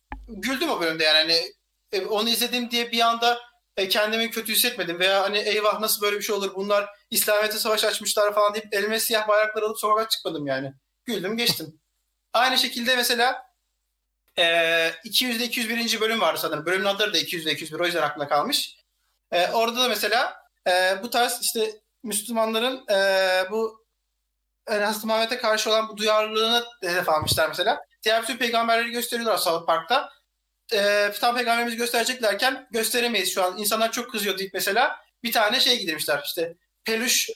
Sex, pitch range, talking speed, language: male, 190-235 Hz, 160 wpm, Turkish